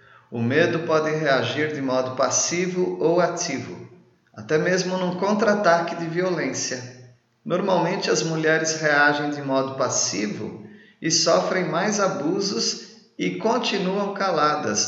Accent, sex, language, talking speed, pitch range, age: Brazilian, male, Spanish, 115 wpm, 130-170 Hz, 40-59